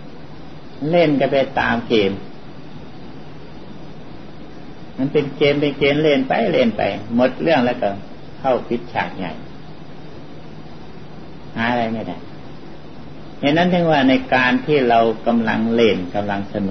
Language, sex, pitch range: Thai, male, 100-140 Hz